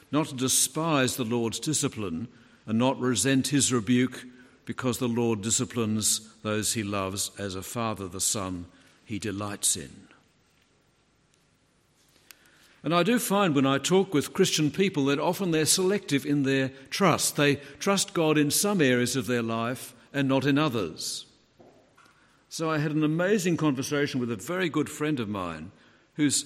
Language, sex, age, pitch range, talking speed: English, male, 60-79, 125-155 Hz, 160 wpm